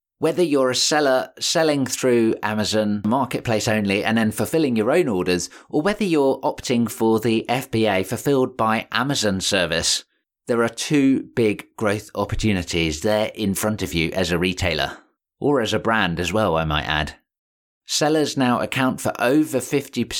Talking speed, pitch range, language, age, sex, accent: 160 wpm, 105-135 Hz, English, 20-39, male, British